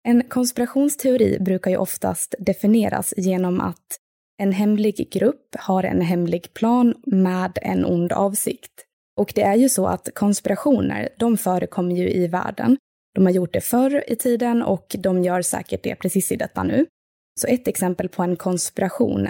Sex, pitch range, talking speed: female, 180-210 Hz, 165 wpm